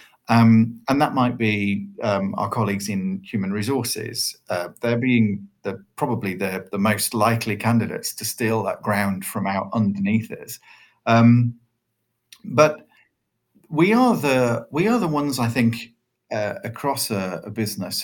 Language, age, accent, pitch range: English, 40-59, British, 110-140 Hz